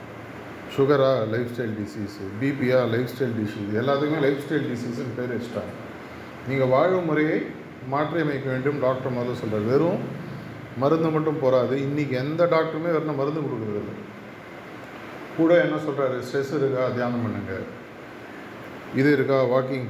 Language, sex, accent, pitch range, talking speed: Tamil, male, native, 125-145 Hz, 130 wpm